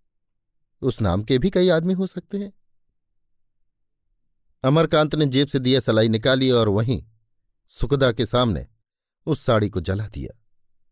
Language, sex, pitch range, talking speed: Hindi, male, 105-135 Hz, 145 wpm